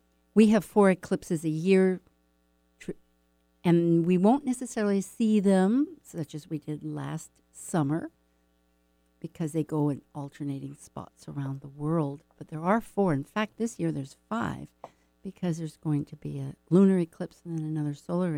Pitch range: 135-190 Hz